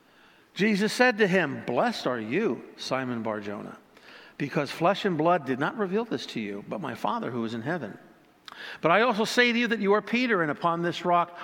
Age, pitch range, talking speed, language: 60-79, 145-185 Hz, 210 wpm, English